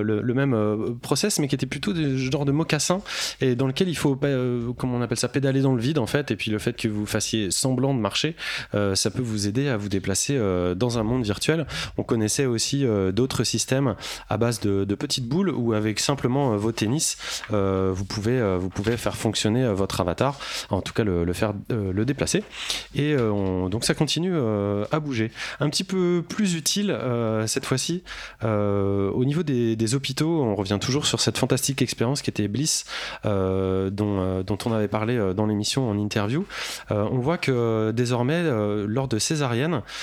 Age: 20-39